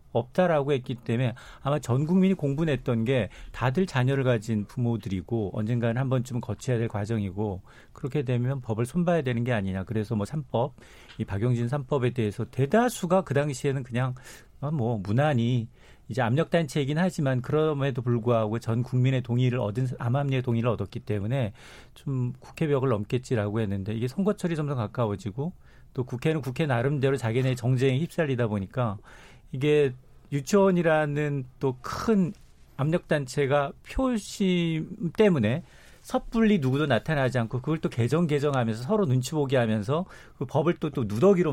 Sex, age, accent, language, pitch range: male, 40-59, native, Korean, 120-160 Hz